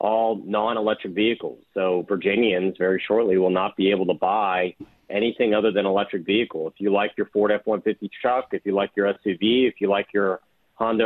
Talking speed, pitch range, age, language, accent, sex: 190 wpm, 95-110 Hz, 40-59, English, American, male